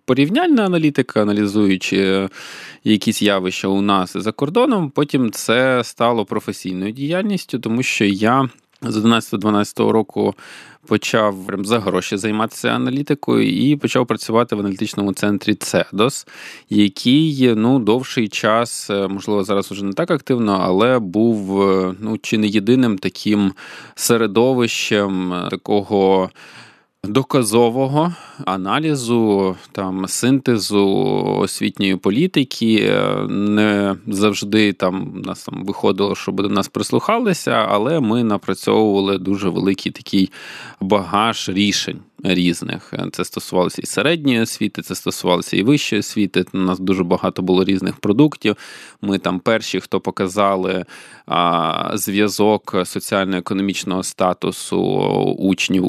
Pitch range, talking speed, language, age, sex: 95-120 Hz, 110 wpm, Ukrainian, 20-39, male